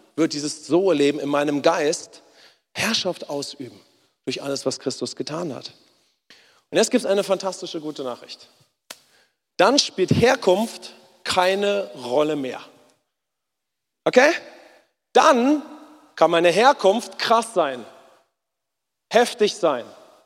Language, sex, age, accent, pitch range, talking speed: English, male, 40-59, German, 145-210 Hz, 115 wpm